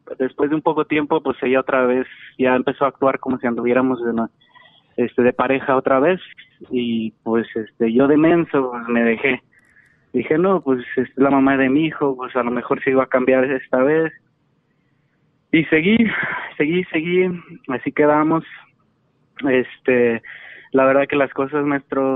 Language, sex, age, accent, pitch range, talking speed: Spanish, male, 20-39, Mexican, 130-155 Hz, 175 wpm